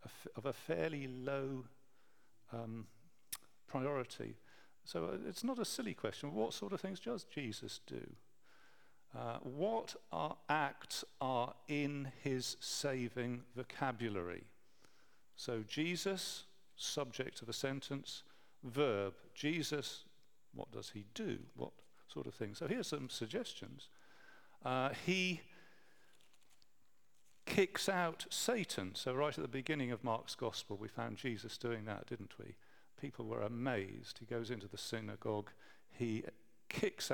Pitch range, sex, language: 115-145 Hz, male, English